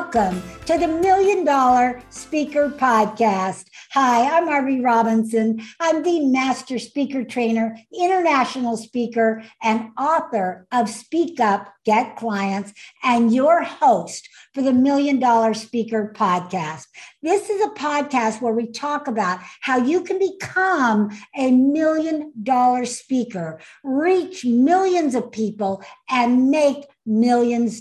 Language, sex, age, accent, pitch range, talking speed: English, female, 60-79, American, 225-310 Hz, 120 wpm